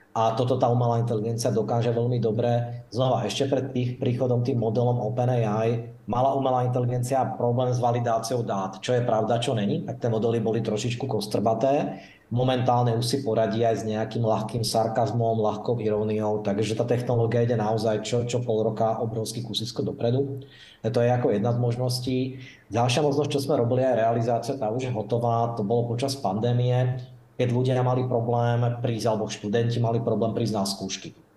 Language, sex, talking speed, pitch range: Slovak, male, 175 wpm, 115-130 Hz